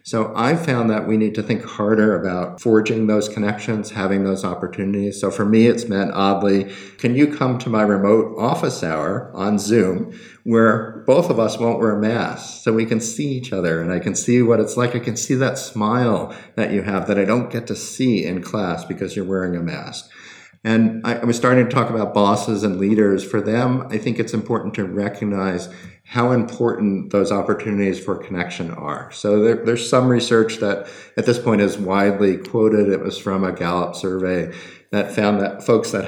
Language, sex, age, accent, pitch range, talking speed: English, male, 50-69, American, 95-115 Hz, 200 wpm